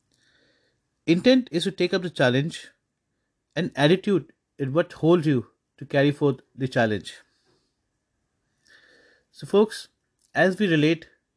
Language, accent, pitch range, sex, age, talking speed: English, Indian, 140-185 Hz, male, 30-49, 120 wpm